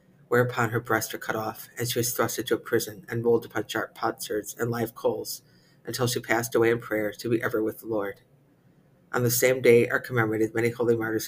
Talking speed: 225 wpm